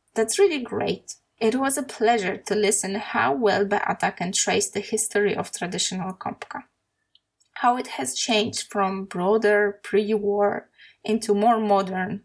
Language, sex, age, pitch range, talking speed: Polish, female, 20-39, 200-235 Hz, 140 wpm